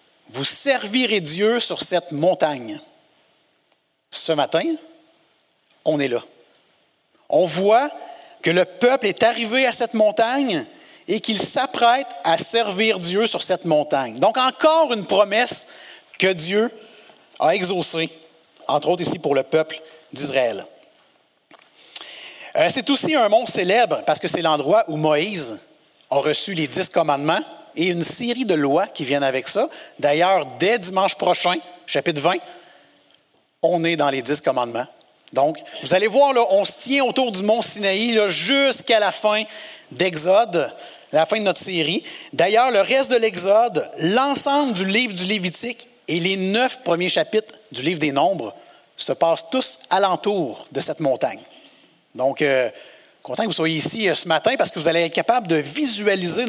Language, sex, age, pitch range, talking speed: French, male, 60-79, 170-245 Hz, 155 wpm